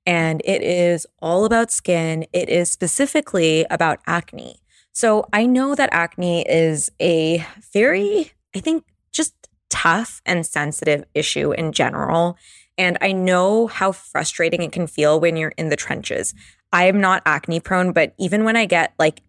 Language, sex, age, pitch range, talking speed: English, female, 20-39, 160-195 Hz, 160 wpm